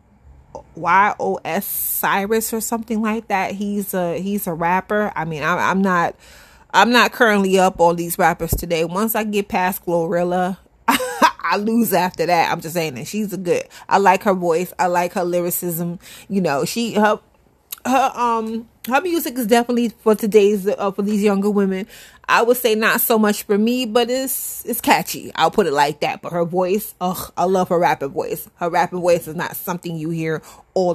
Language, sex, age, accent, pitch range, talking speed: English, female, 30-49, American, 175-220 Hz, 190 wpm